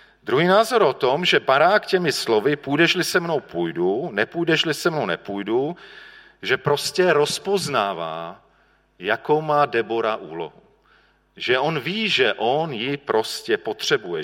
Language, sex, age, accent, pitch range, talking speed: Czech, male, 40-59, native, 140-175 Hz, 130 wpm